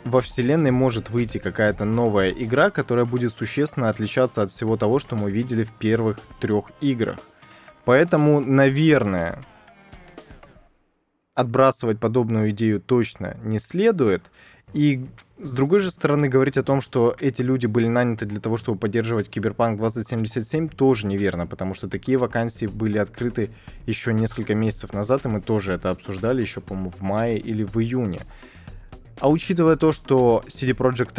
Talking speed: 150 wpm